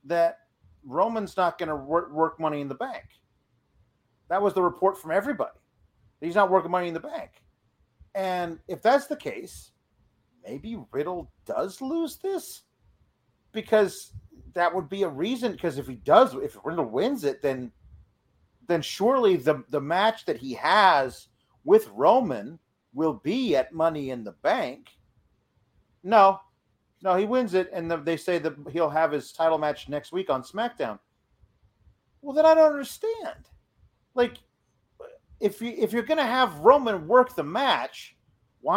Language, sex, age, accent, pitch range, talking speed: English, male, 40-59, American, 170-270 Hz, 160 wpm